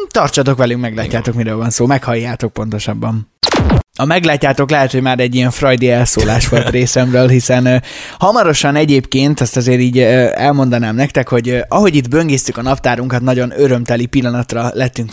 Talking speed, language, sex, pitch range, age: 160 wpm, Hungarian, male, 120-140 Hz, 20-39